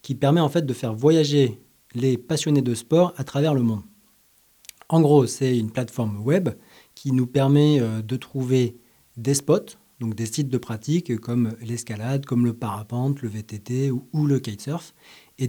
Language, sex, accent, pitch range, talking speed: French, male, French, 120-155 Hz, 170 wpm